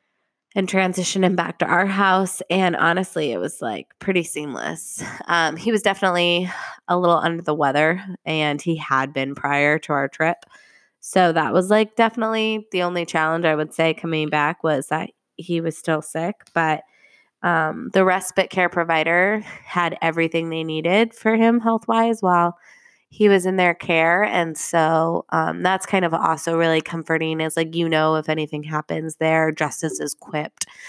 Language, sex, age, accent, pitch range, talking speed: English, female, 20-39, American, 160-190 Hz, 175 wpm